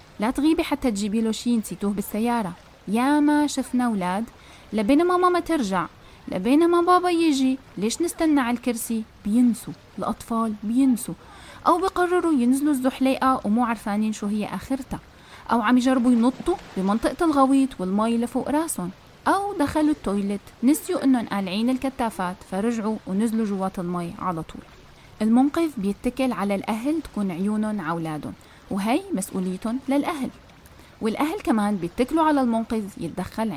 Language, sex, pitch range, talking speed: Arabic, female, 205-285 Hz, 130 wpm